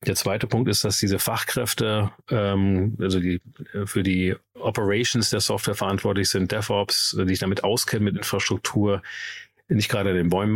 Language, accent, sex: German, German, male